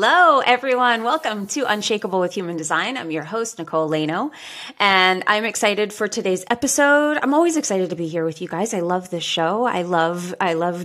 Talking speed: 200 wpm